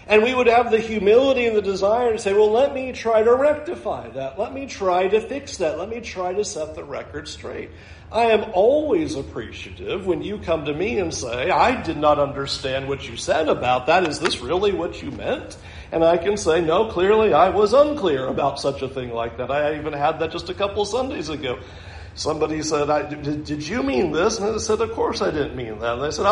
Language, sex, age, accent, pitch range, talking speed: English, male, 50-69, American, 155-235 Hz, 235 wpm